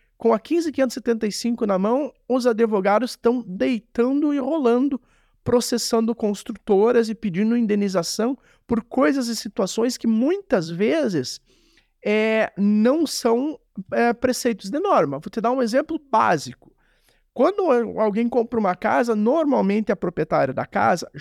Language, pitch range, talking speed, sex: Portuguese, 205-250 Hz, 125 wpm, male